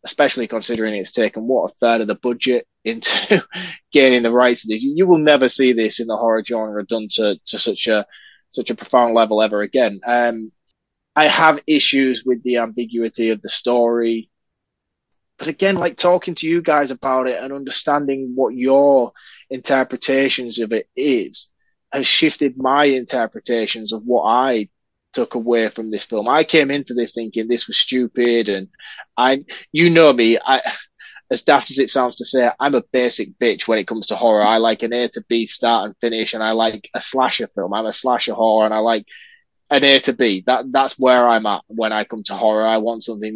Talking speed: 200 wpm